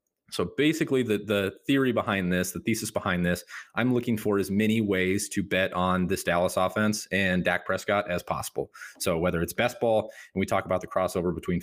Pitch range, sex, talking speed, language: 90-105 Hz, male, 205 wpm, English